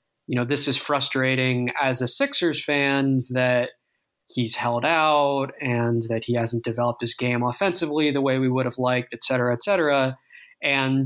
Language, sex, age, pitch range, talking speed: English, male, 20-39, 125-140 Hz, 175 wpm